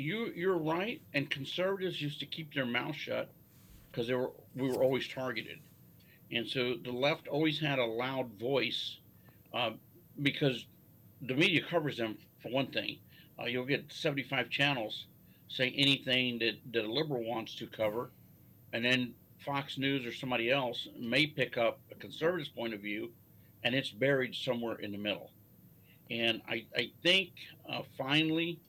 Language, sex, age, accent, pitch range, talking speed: English, male, 50-69, American, 115-140 Hz, 160 wpm